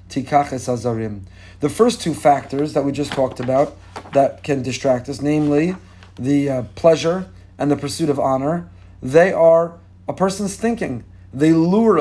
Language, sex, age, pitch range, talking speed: English, male, 40-59, 125-160 Hz, 140 wpm